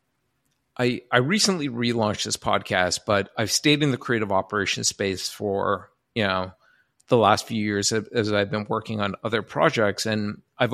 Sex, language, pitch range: male, English, 100-120 Hz